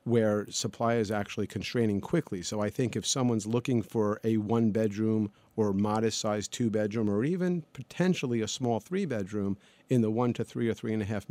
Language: English